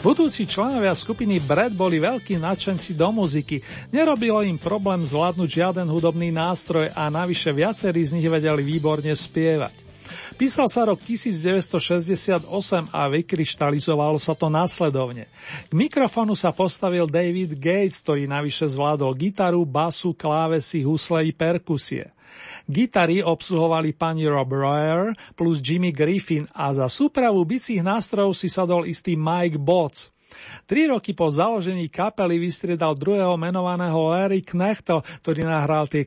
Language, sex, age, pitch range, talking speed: Slovak, male, 40-59, 155-190 Hz, 130 wpm